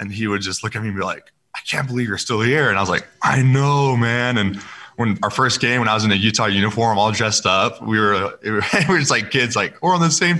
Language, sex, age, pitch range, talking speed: English, male, 20-39, 100-115 Hz, 295 wpm